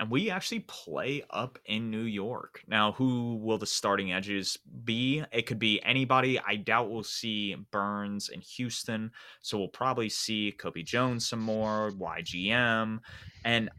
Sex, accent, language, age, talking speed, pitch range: male, American, English, 20-39, 155 wpm, 100-120 Hz